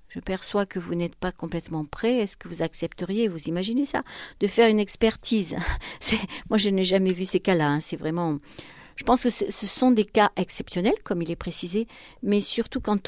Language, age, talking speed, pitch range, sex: French, 50-69, 210 wpm, 165-220 Hz, female